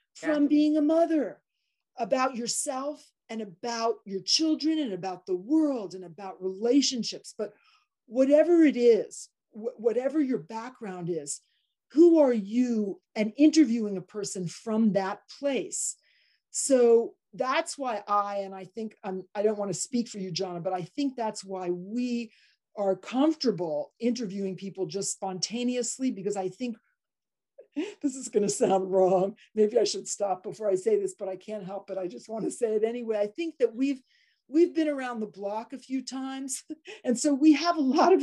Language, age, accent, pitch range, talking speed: English, 40-59, American, 200-285 Hz, 175 wpm